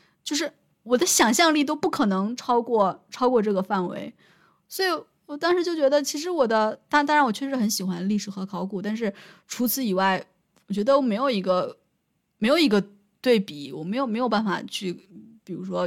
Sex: female